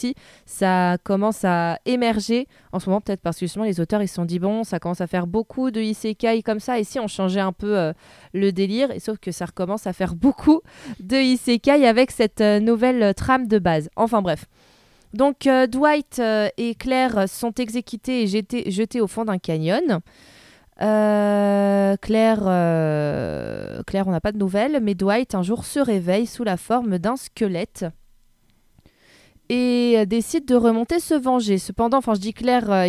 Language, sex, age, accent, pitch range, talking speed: French, female, 20-39, French, 185-235 Hz, 185 wpm